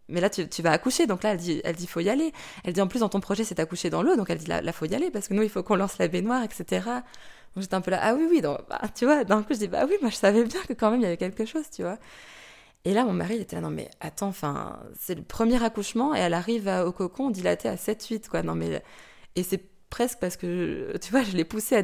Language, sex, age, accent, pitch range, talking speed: French, female, 20-39, French, 175-220 Hz, 310 wpm